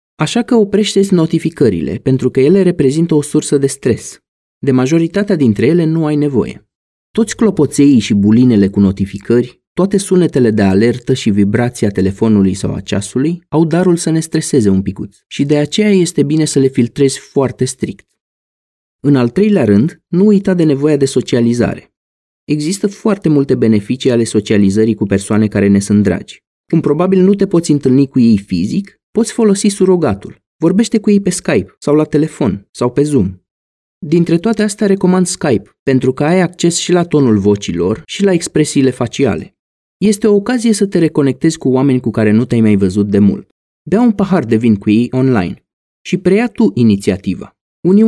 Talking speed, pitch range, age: 180 wpm, 115-185 Hz, 30-49